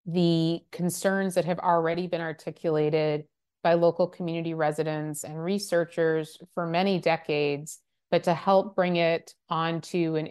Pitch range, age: 155-180 Hz, 30-49